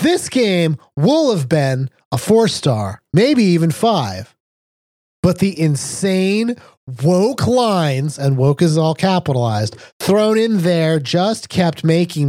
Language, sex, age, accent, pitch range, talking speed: English, male, 30-49, American, 140-205 Hz, 130 wpm